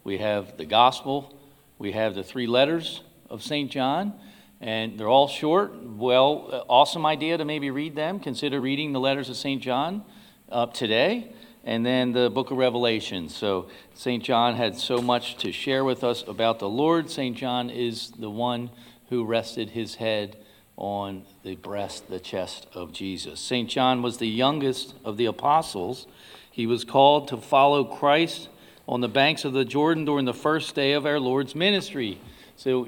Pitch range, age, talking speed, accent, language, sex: 115-145 Hz, 50-69, 175 wpm, American, English, male